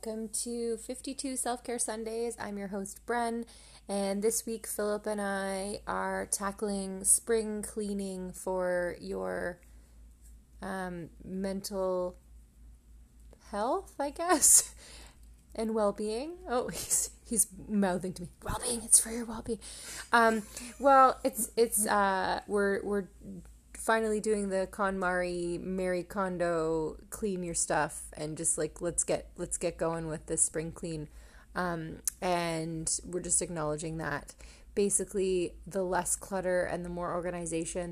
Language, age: English, 20-39